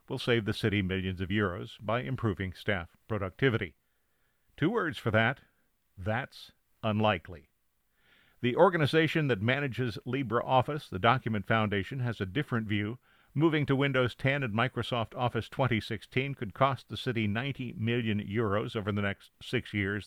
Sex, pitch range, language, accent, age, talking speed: male, 105-130 Hz, English, American, 50-69, 145 wpm